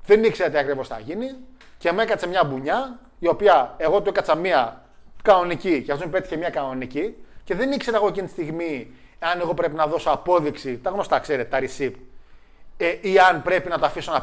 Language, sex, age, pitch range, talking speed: Greek, male, 30-49, 140-220 Hz, 210 wpm